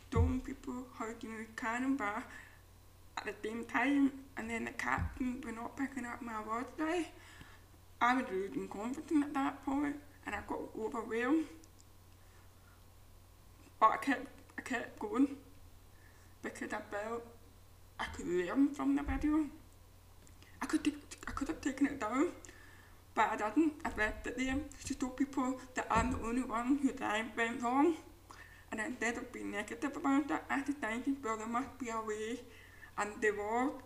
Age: 20-39